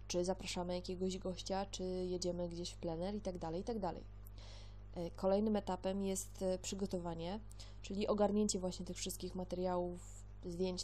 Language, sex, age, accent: Polish, female, 20-39, native